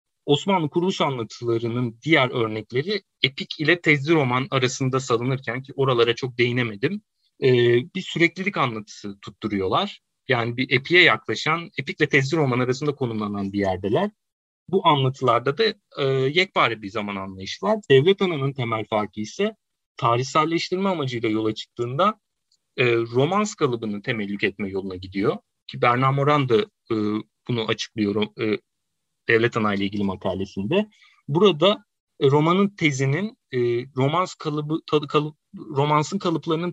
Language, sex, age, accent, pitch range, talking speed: Turkish, male, 40-59, native, 115-165 Hz, 125 wpm